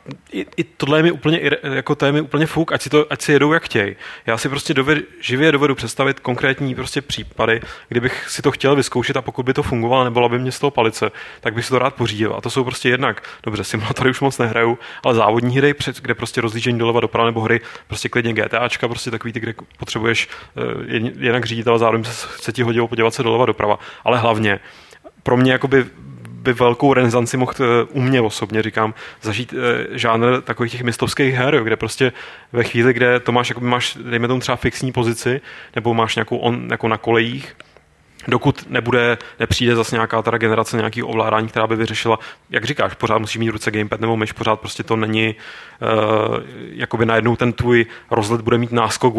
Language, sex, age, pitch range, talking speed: Czech, male, 30-49, 115-130 Hz, 205 wpm